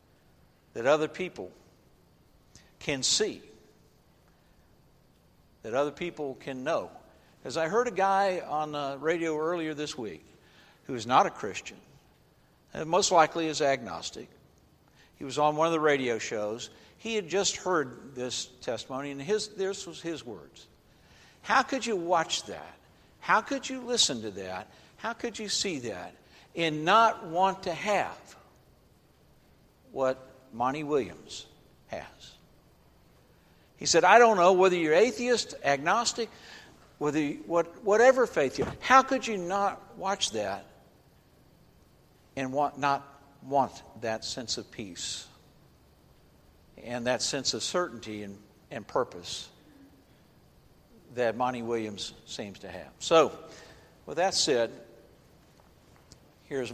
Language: English